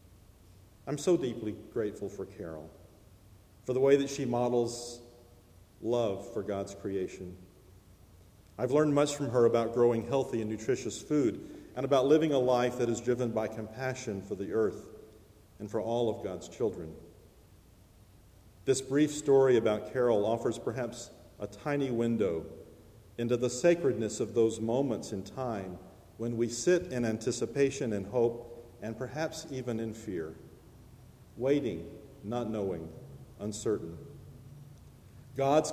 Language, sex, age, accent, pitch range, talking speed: English, male, 50-69, American, 100-125 Hz, 135 wpm